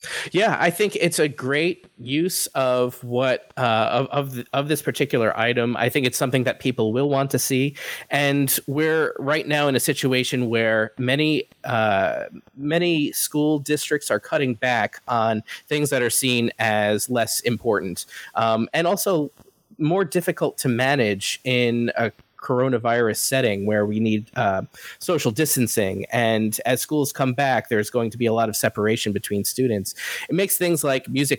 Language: English